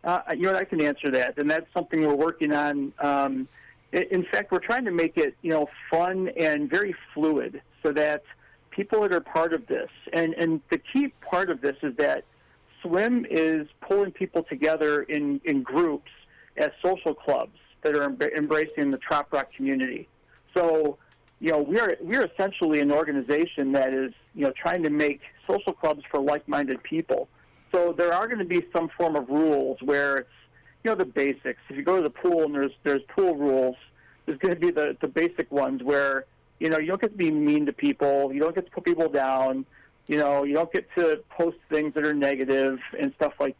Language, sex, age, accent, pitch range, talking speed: English, male, 50-69, American, 140-175 Hz, 205 wpm